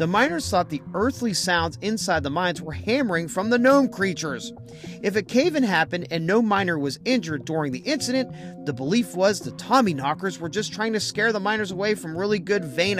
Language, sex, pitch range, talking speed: English, male, 155-235 Hz, 205 wpm